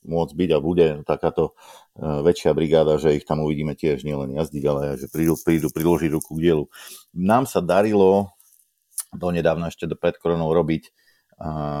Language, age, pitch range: Slovak, 50-69, 80-95 Hz